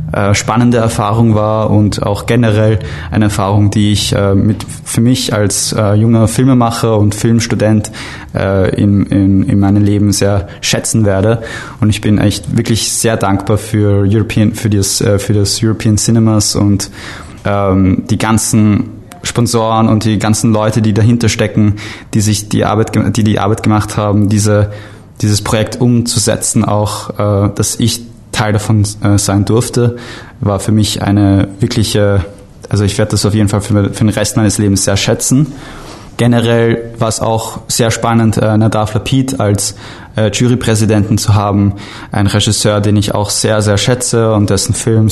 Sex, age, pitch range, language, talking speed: male, 20-39, 105-115 Hz, English, 155 wpm